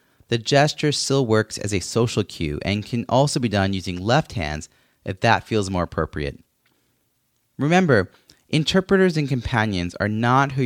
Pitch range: 95-130 Hz